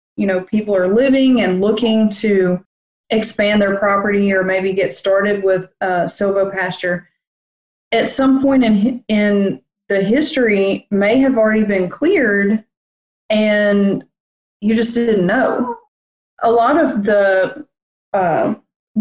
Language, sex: English, female